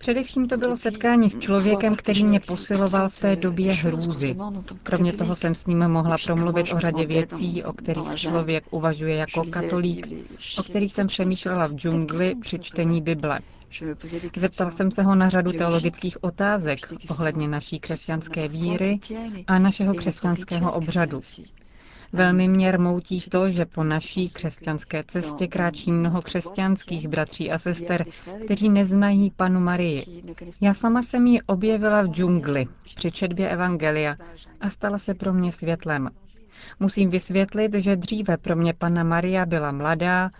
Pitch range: 165-195 Hz